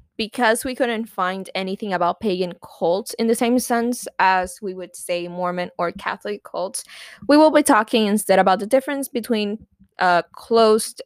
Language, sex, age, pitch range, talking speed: English, female, 20-39, 180-235 Hz, 170 wpm